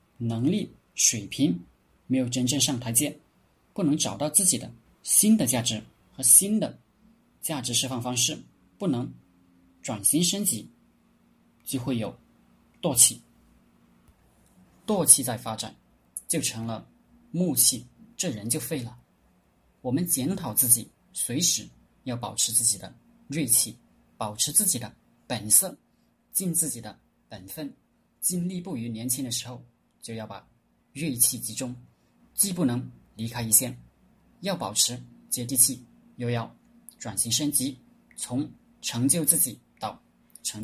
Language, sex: Chinese, male